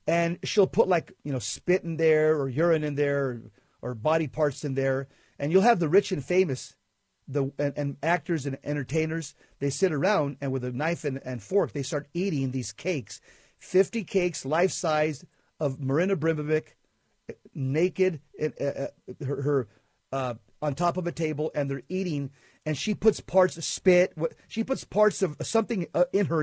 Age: 40-59